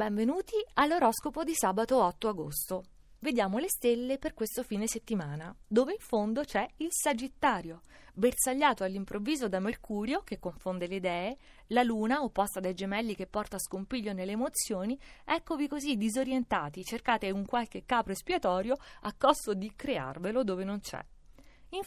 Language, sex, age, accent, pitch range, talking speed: Italian, female, 30-49, native, 190-265 Hz, 145 wpm